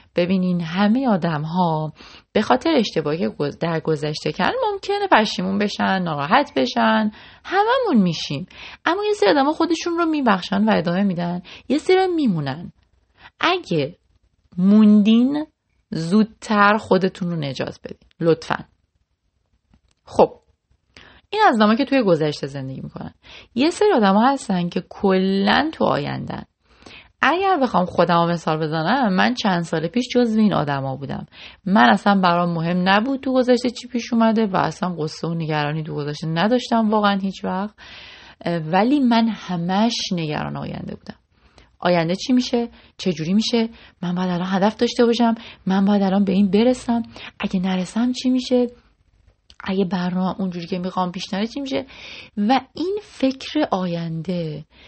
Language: Persian